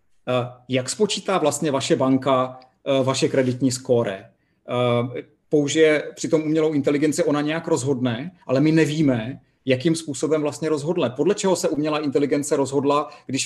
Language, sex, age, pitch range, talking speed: Czech, male, 40-59, 130-155 Hz, 130 wpm